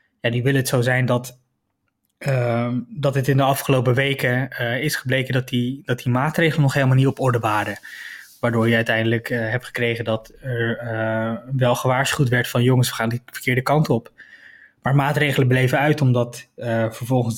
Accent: Dutch